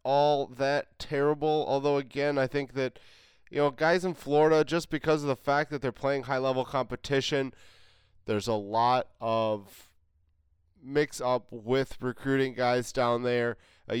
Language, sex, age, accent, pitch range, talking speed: English, male, 20-39, American, 120-145 Hz, 145 wpm